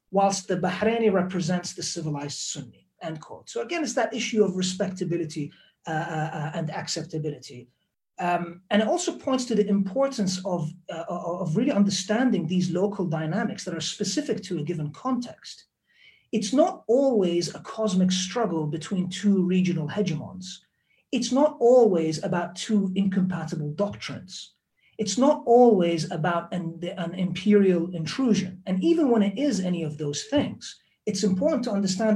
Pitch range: 175-220 Hz